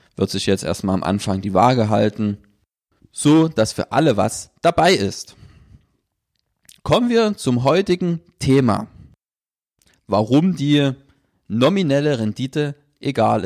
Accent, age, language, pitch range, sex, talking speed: German, 30-49, German, 105-140 Hz, male, 115 wpm